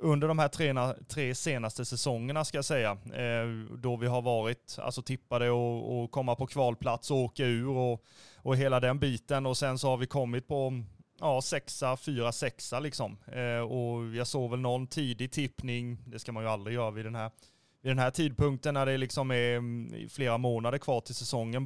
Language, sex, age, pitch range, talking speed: Swedish, male, 20-39, 115-140 Hz, 195 wpm